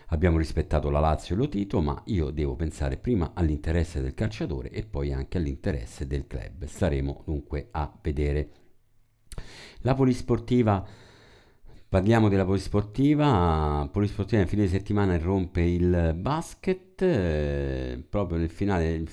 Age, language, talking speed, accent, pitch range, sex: 50-69, Italian, 130 wpm, native, 75-95 Hz, male